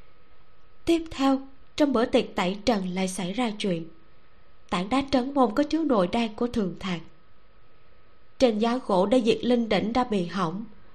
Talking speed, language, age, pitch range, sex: 175 wpm, Vietnamese, 20-39, 180-255 Hz, female